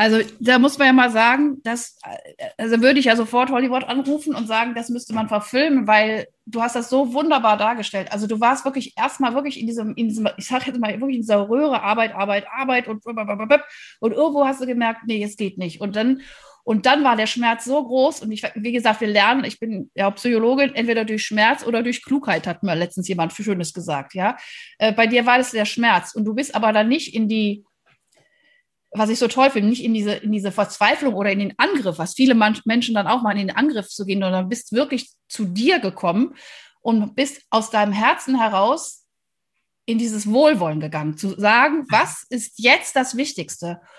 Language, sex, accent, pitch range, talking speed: German, female, German, 210-265 Hz, 210 wpm